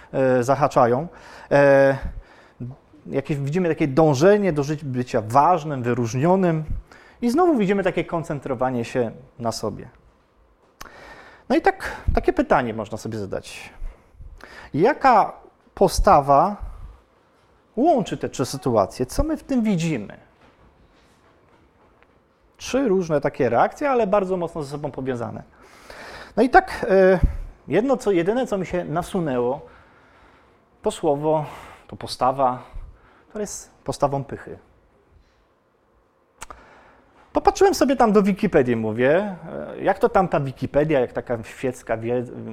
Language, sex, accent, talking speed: Polish, male, native, 105 wpm